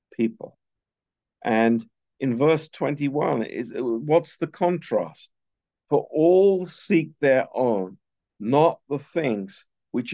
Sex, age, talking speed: male, 50-69, 105 wpm